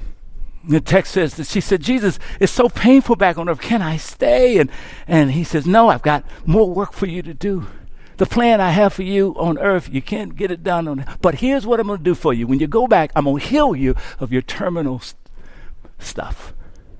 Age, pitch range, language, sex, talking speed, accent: 60-79, 175-255 Hz, English, male, 220 wpm, American